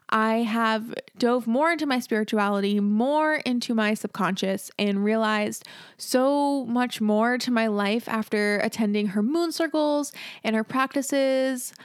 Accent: American